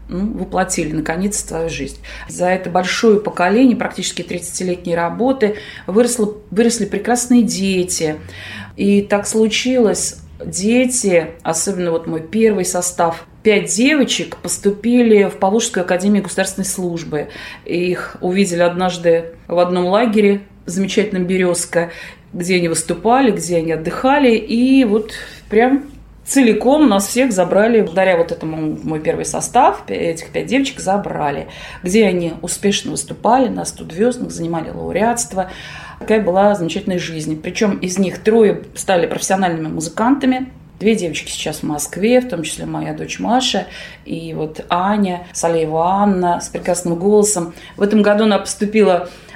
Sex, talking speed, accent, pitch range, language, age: female, 130 wpm, native, 170-220 Hz, Russian, 30-49